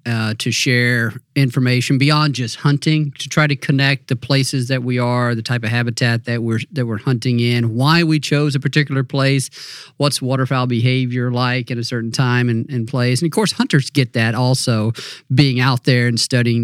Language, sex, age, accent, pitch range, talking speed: English, male, 40-59, American, 120-145 Hz, 200 wpm